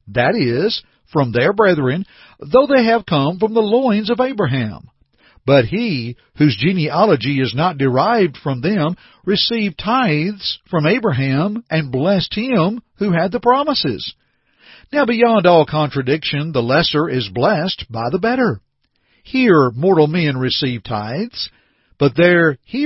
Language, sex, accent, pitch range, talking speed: English, male, American, 135-210 Hz, 140 wpm